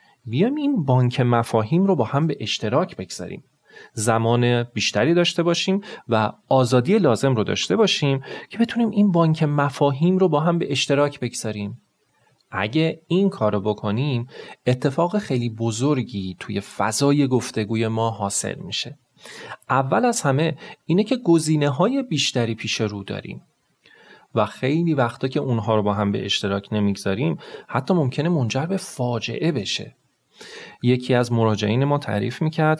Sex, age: male, 30-49